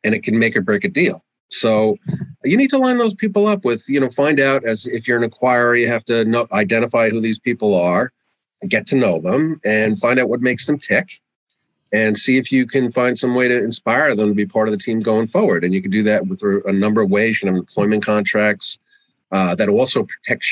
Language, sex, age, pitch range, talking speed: English, male, 40-59, 105-135 Hz, 250 wpm